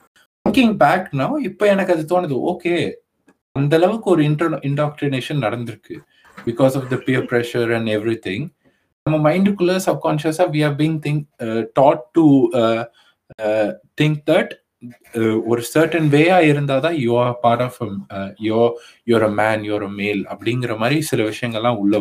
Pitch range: 120-155 Hz